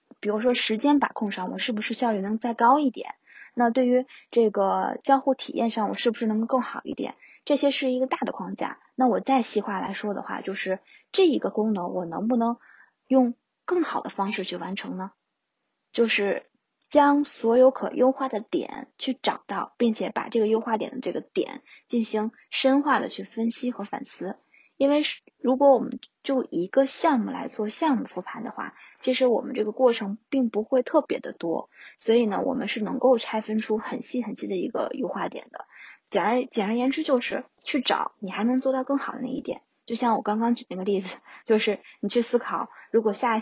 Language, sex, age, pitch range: Chinese, female, 20-39, 215-265 Hz